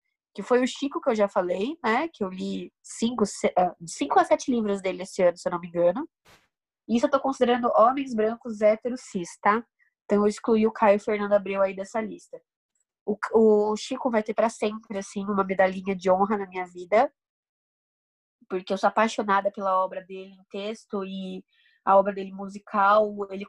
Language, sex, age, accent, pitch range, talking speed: Portuguese, female, 20-39, Brazilian, 200-255 Hz, 190 wpm